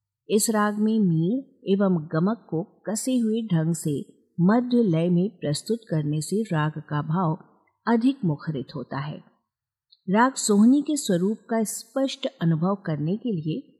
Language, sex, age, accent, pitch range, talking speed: Hindi, female, 50-69, native, 155-225 Hz, 150 wpm